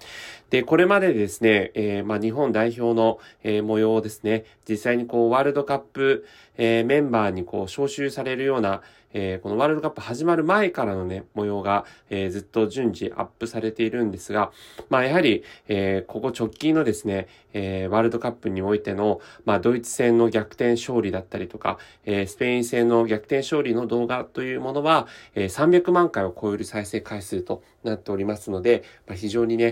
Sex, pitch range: male, 105-130 Hz